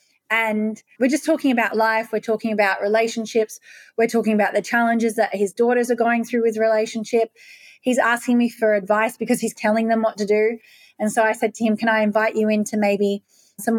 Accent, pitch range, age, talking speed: Australian, 205-235 Hz, 20-39, 210 wpm